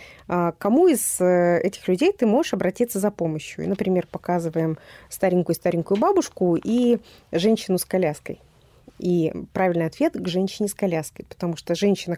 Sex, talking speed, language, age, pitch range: female, 135 wpm, Russian, 20-39, 175-220 Hz